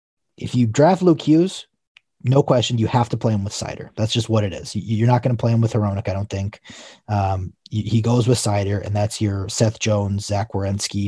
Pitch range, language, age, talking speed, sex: 100-125 Hz, English, 30-49, 225 wpm, male